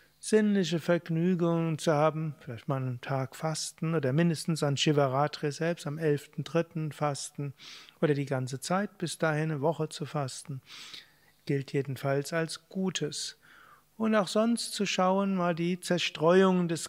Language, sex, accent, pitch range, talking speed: German, male, German, 145-170 Hz, 140 wpm